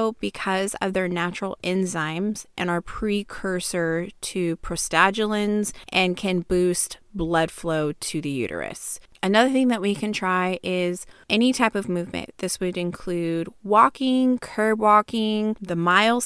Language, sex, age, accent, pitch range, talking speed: English, female, 20-39, American, 175-210 Hz, 135 wpm